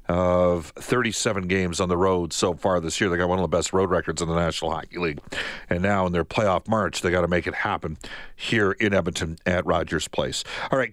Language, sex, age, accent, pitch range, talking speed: English, male, 50-69, American, 95-125 Hz, 235 wpm